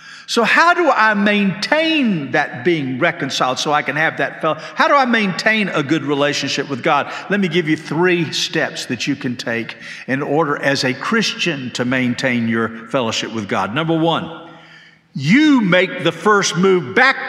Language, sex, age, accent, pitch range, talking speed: English, male, 50-69, American, 145-230 Hz, 180 wpm